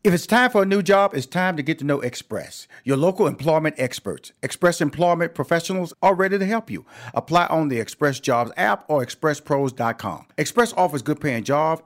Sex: male